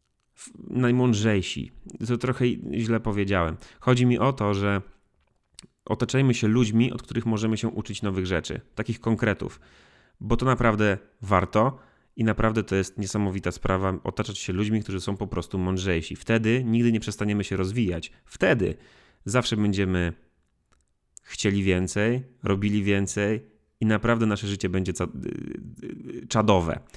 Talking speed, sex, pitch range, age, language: 130 wpm, male, 95-125 Hz, 30-49, Polish